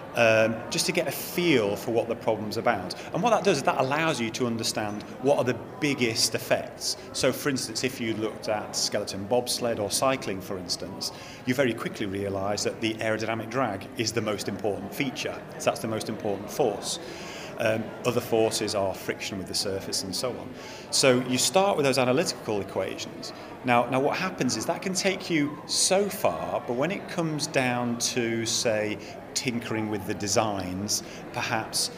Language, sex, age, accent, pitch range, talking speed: English, male, 30-49, British, 110-130 Hz, 185 wpm